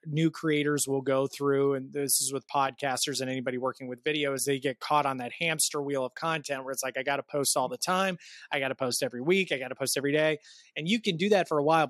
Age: 20-39